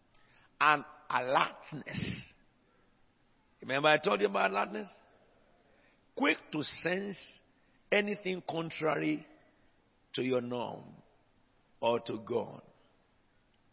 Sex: male